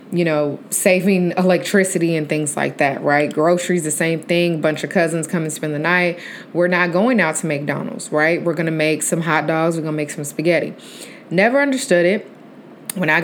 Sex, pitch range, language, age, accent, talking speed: female, 155-190 Hz, English, 20-39, American, 210 wpm